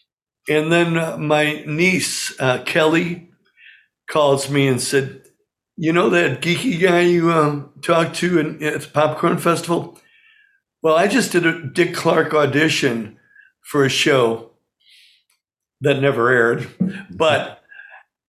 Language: English